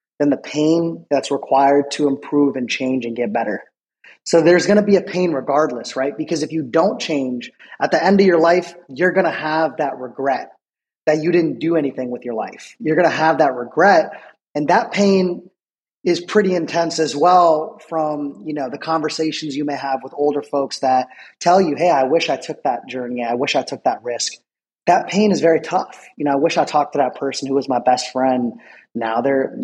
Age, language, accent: 30-49, English, American